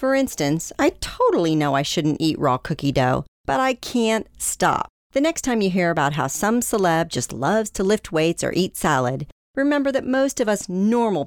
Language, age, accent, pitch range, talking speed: English, 40-59, American, 155-240 Hz, 200 wpm